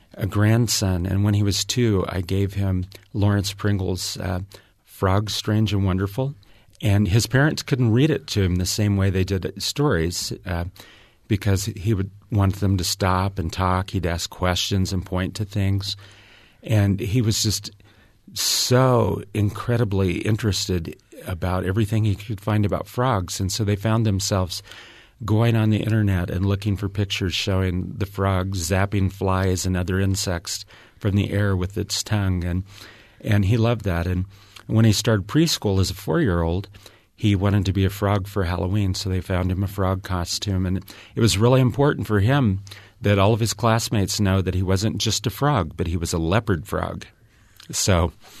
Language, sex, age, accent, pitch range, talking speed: English, male, 40-59, American, 95-110 Hz, 175 wpm